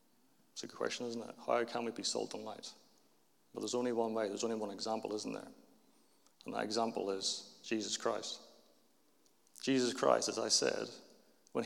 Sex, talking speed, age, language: male, 185 wpm, 40-59, English